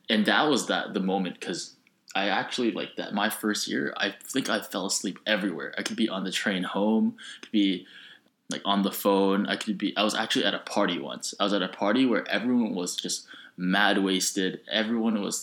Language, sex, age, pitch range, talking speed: English, male, 20-39, 95-110 Hz, 220 wpm